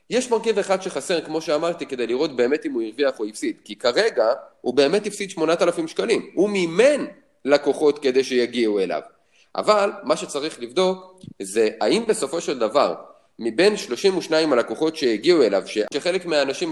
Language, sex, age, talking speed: Hebrew, male, 30-49, 155 wpm